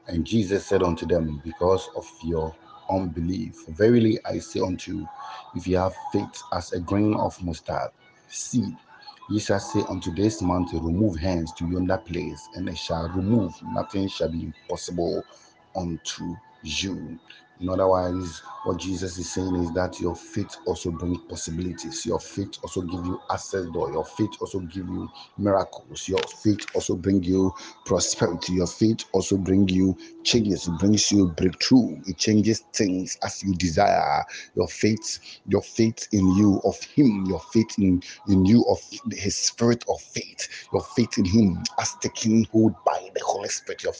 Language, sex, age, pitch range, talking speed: English, male, 50-69, 90-105 Hz, 170 wpm